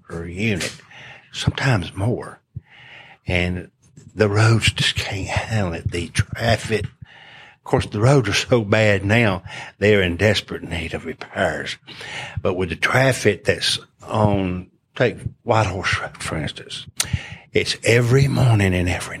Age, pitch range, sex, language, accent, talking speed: 60-79, 95-115 Hz, male, English, American, 130 wpm